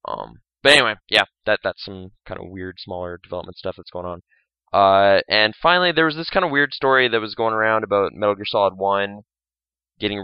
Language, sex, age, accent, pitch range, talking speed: English, male, 20-39, American, 95-115 Hz, 210 wpm